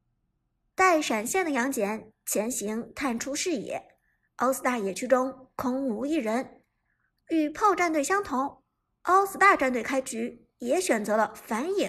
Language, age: Chinese, 50-69